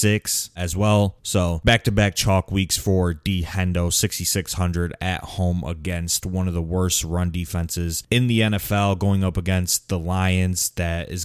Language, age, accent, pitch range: English, 20-39, American, 90-100 Hz